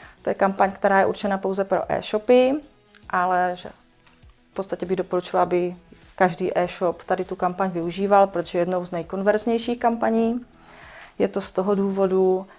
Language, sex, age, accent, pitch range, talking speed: Czech, female, 30-49, native, 175-205 Hz, 155 wpm